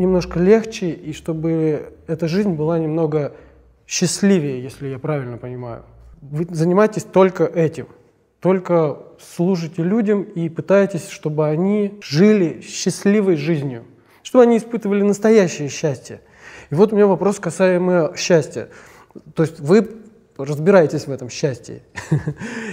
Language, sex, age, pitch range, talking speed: Russian, male, 20-39, 160-205 Hz, 120 wpm